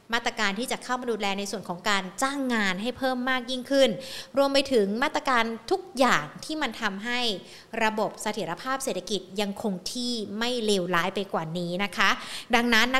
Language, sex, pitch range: Thai, female, 200-250 Hz